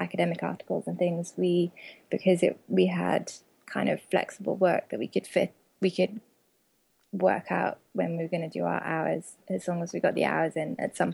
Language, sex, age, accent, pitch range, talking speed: English, female, 20-39, British, 165-190 Hz, 210 wpm